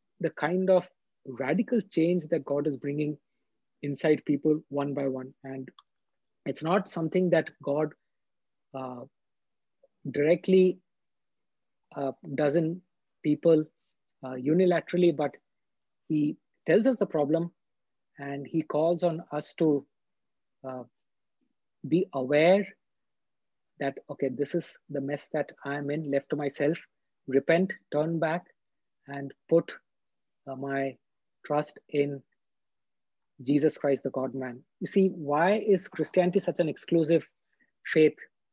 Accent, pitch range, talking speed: Indian, 140-175 Hz, 125 wpm